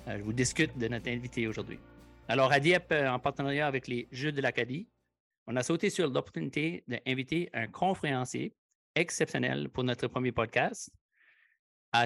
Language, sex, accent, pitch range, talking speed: English, male, Canadian, 115-145 Hz, 165 wpm